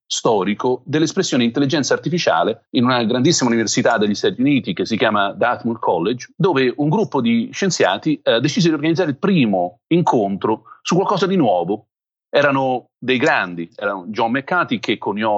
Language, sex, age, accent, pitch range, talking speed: Italian, male, 40-59, native, 110-160 Hz, 155 wpm